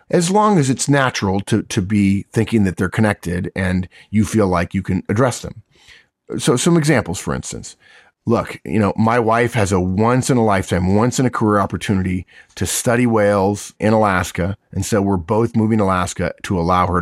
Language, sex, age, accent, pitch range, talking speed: English, male, 40-59, American, 90-110 Hz, 180 wpm